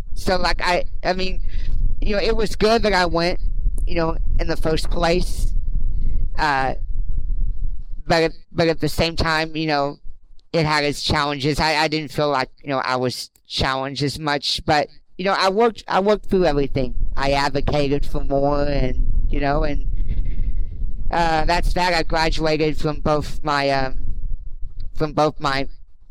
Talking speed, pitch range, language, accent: 170 wpm, 110-155 Hz, English, American